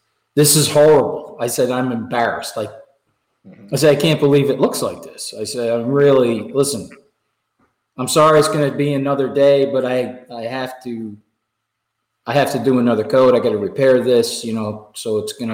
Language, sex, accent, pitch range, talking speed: English, male, American, 120-145 Hz, 195 wpm